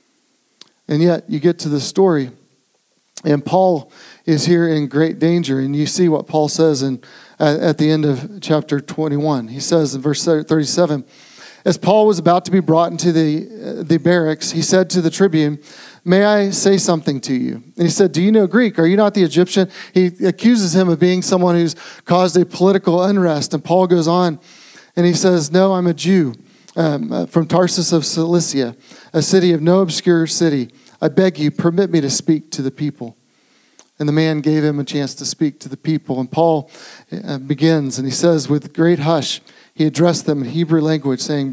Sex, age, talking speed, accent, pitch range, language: male, 40-59, 200 wpm, American, 150-180 Hz, English